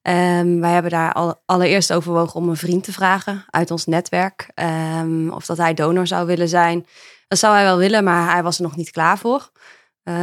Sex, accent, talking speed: female, Dutch, 215 wpm